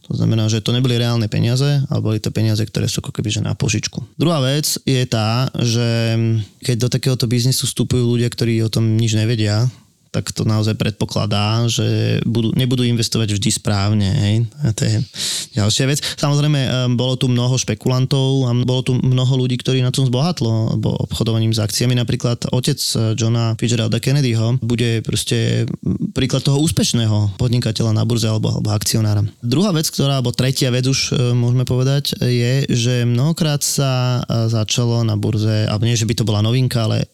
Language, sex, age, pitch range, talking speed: Slovak, male, 20-39, 115-135 Hz, 175 wpm